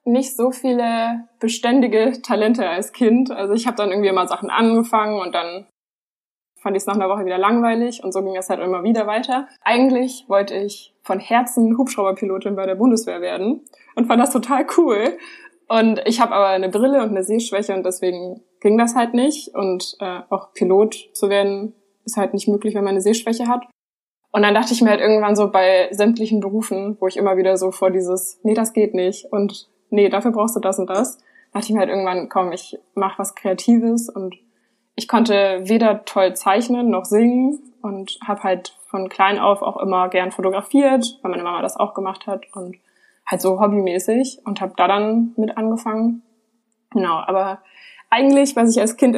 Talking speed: 195 wpm